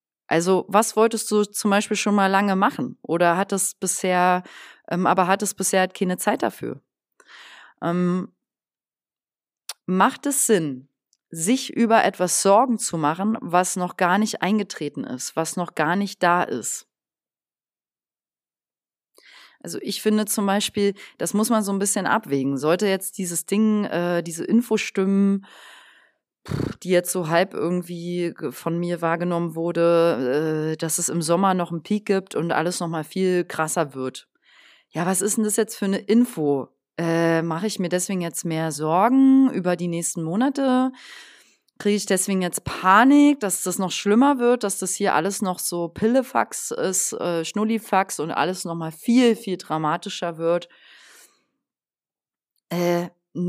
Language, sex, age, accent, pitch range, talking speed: German, female, 30-49, German, 170-210 Hz, 155 wpm